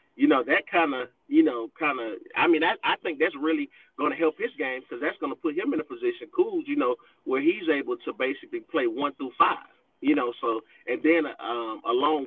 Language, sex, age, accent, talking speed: English, male, 30-49, American, 240 wpm